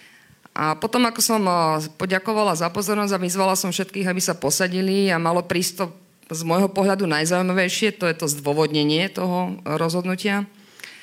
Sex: female